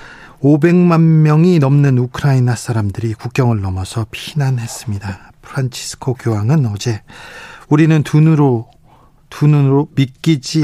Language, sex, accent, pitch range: Korean, male, native, 115-145 Hz